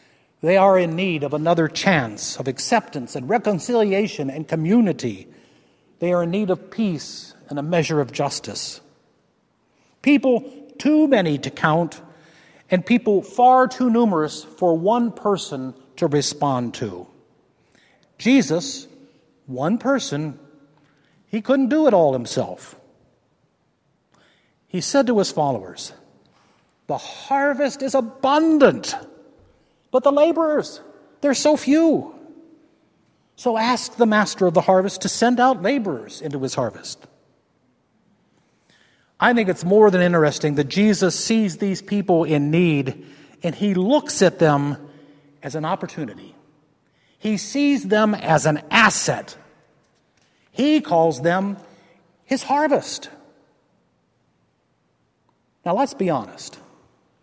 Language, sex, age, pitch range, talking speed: English, male, 50-69, 155-250 Hz, 120 wpm